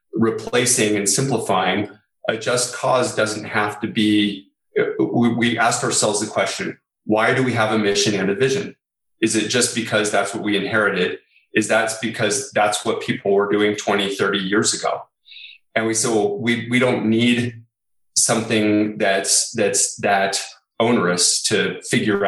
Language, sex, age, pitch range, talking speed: English, male, 30-49, 100-120 Hz, 160 wpm